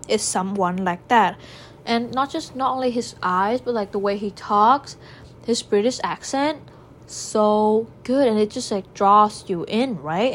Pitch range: 195-235 Hz